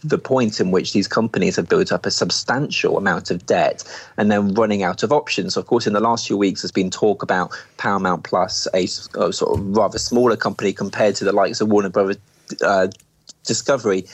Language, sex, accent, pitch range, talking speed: English, male, British, 95-125 Hz, 205 wpm